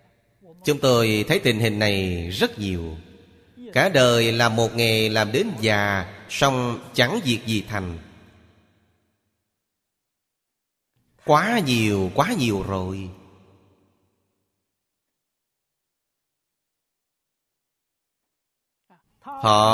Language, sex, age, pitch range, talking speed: Vietnamese, male, 30-49, 100-130 Hz, 80 wpm